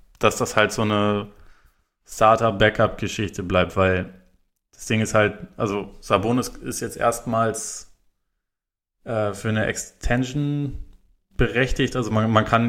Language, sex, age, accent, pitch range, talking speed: German, male, 20-39, German, 100-115 Hz, 130 wpm